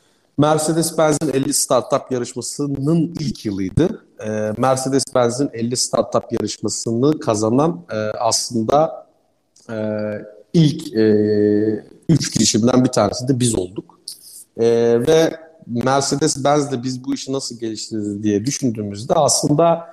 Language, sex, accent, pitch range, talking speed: Turkish, male, native, 110-140 Hz, 115 wpm